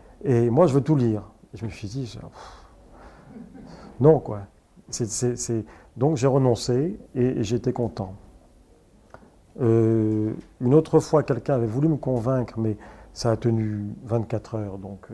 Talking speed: 160 wpm